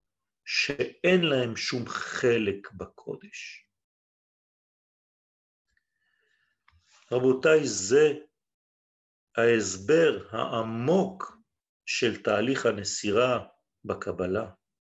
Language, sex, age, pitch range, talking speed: French, male, 40-59, 115-190 Hz, 50 wpm